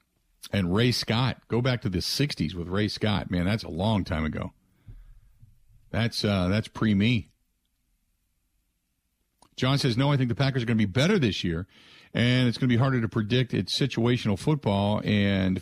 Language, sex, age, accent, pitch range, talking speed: English, male, 50-69, American, 100-135 Hz, 180 wpm